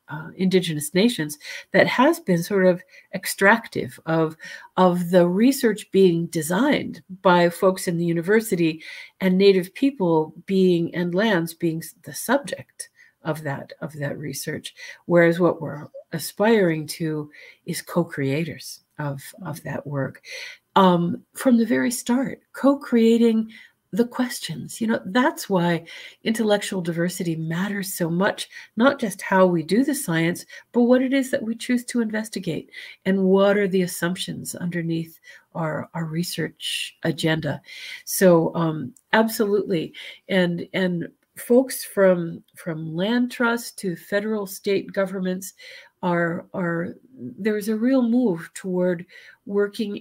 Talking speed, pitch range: 135 wpm, 170-220 Hz